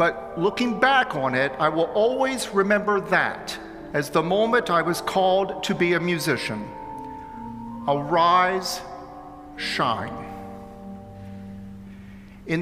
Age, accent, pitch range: 50-69, American, 155-210 Hz